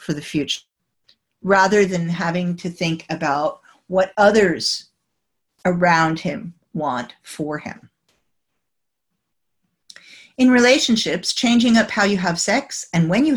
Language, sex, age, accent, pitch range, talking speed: English, female, 50-69, American, 170-225 Hz, 115 wpm